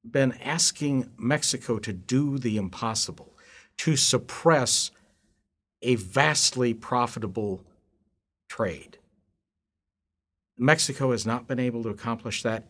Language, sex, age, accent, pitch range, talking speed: English, male, 50-69, American, 105-130 Hz, 100 wpm